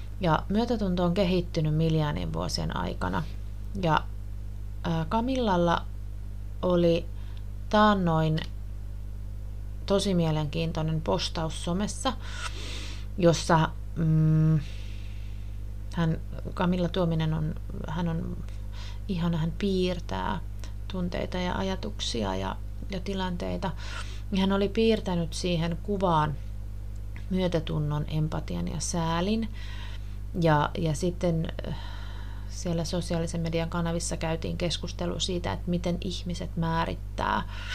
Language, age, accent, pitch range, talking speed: Finnish, 30-49, native, 100-165 Hz, 90 wpm